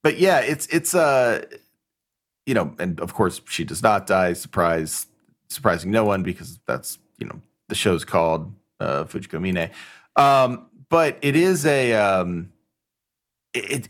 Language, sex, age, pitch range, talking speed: English, male, 30-49, 85-115 Hz, 150 wpm